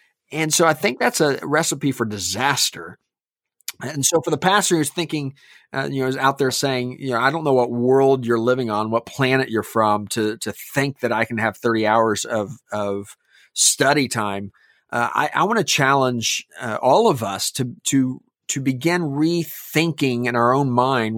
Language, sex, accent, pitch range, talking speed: English, male, American, 120-155 Hz, 195 wpm